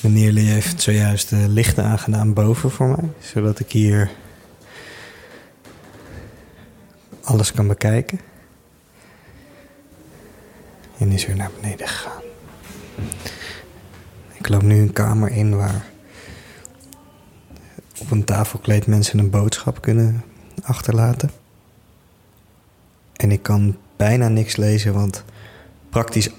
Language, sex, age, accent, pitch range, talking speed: Dutch, male, 20-39, Dutch, 100-120 Hz, 100 wpm